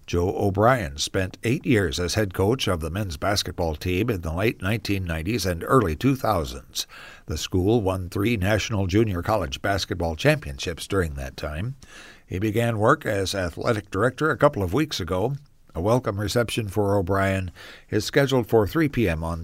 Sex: male